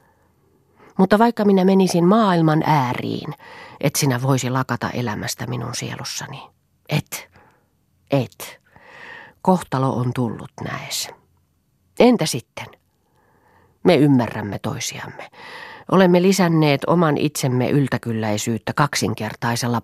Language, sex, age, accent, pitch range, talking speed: Finnish, female, 40-59, native, 120-170 Hz, 90 wpm